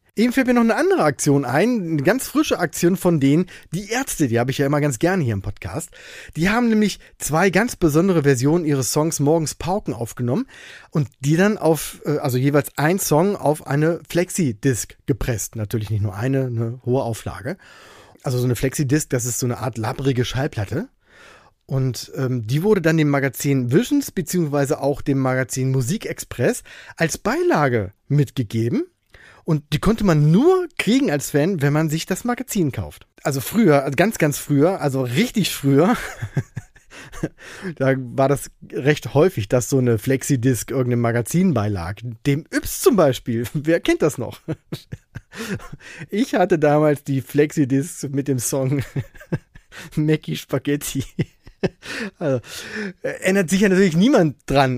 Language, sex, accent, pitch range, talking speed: German, male, German, 135-175 Hz, 160 wpm